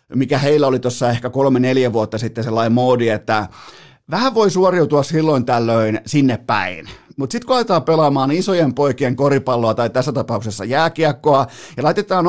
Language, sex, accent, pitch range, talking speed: Finnish, male, native, 120-150 Hz, 150 wpm